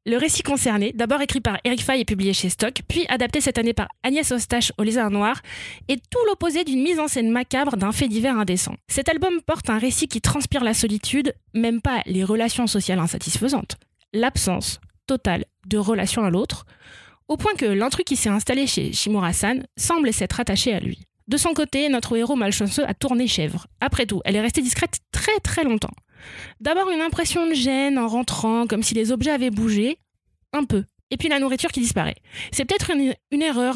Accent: French